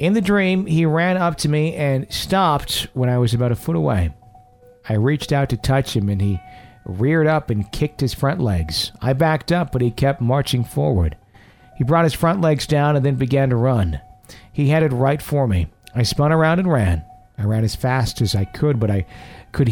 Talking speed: 215 wpm